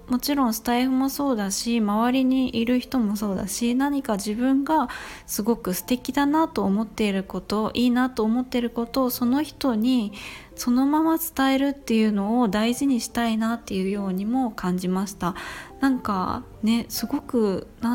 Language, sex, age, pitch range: Japanese, female, 20-39, 200-255 Hz